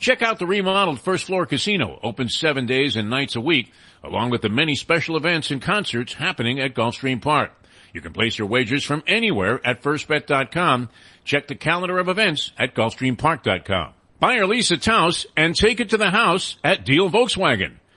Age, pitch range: 50-69, 115-170 Hz